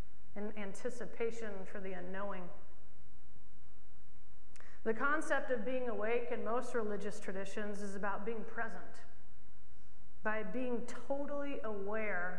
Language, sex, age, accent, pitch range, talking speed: English, female, 40-59, American, 205-245 Hz, 100 wpm